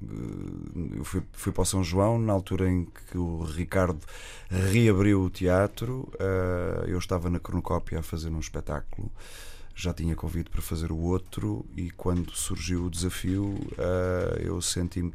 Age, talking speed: 30-49, 150 wpm